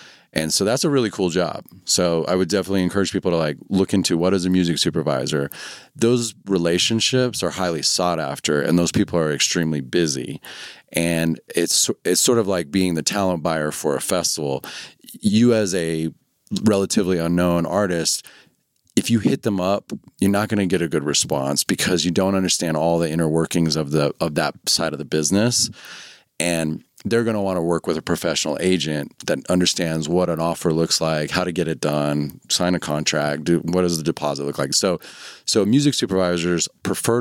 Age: 30-49